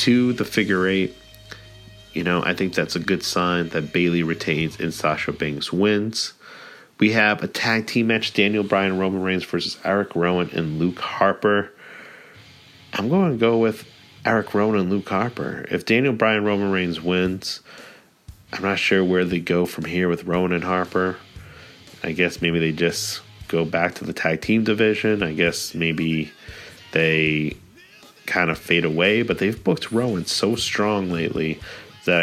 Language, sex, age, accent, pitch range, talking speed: English, male, 30-49, American, 85-105 Hz, 170 wpm